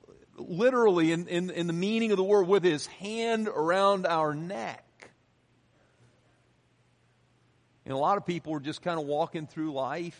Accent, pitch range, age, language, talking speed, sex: American, 150-180 Hz, 50-69, English, 160 wpm, male